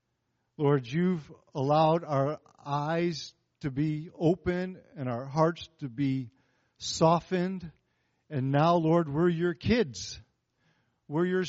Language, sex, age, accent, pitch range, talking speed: English, male, 50-69, American, 130-170 Hz, 115 wpm